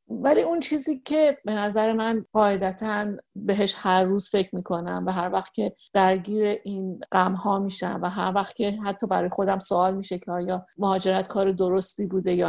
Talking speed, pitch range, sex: 185 wpm, 185-220 Hz, female